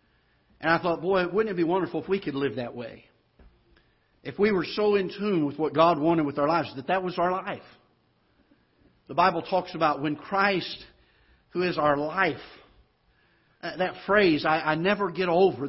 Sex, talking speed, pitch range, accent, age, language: male, 185 wpm, 140-180 Hz, American, 50-69, English